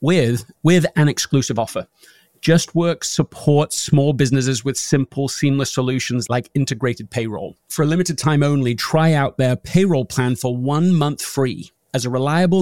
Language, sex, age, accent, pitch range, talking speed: English, male, 30-49, British, 125-160 Hz, 155 wpm